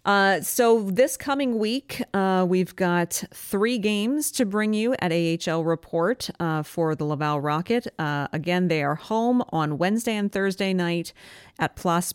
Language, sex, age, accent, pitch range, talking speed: English, female, 40-59, American, 155-195 Hz, 165 wpm